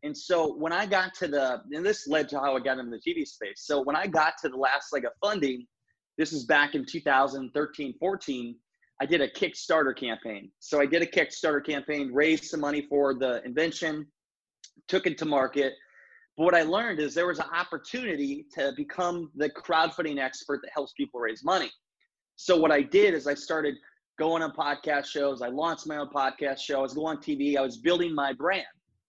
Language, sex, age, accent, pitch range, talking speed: English, male, 20-39, American, 145-180 Hz, 210 wpm